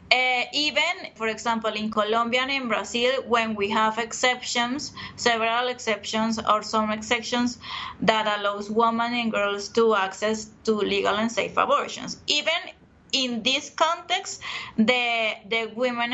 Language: English